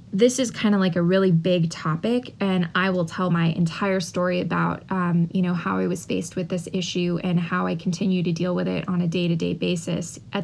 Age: 20-39